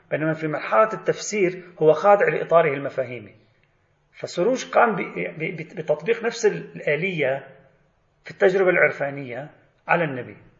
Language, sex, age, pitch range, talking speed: Arabic, male, 40-59, 140-195 Hz, 100 wpm